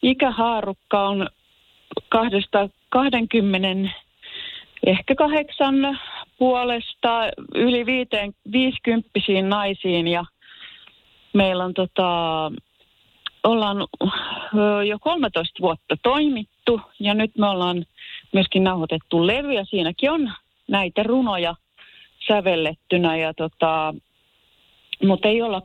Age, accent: 30-49, native